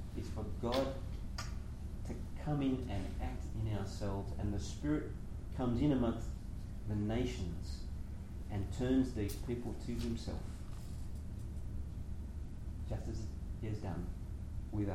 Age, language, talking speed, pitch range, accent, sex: 40-59, English, 120 wpm, 85-110 Hz, Australian, male